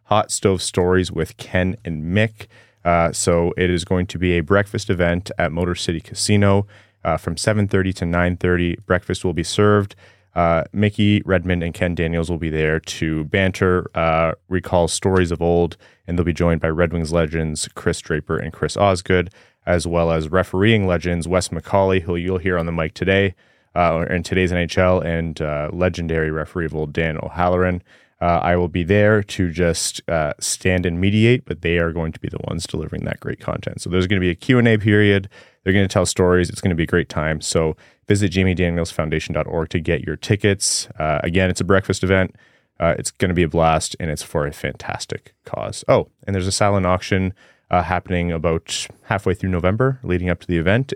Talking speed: 200 wpm